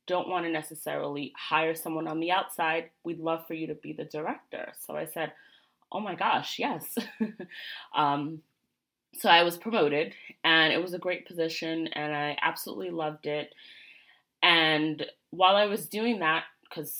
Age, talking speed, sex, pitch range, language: 20-39, 160 wpm, female, 150-185 Hz, English